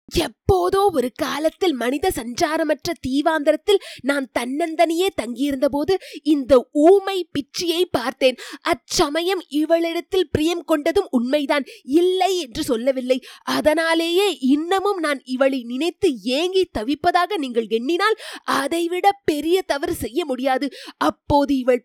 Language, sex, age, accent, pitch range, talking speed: Tamil, female, 20-39, native, 275-345 Hz, 105 wpm